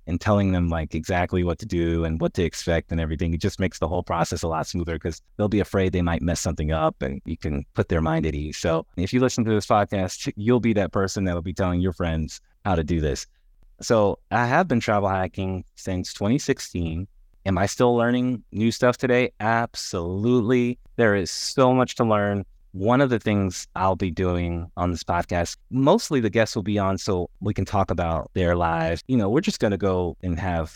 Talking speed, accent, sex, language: 225 wpm, American, male, English